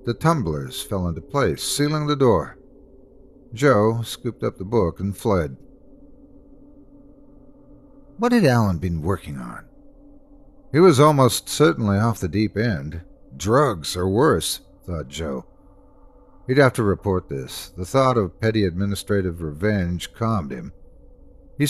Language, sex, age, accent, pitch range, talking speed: English, male, 50-69, American, 90-135 Hz, 135 wpm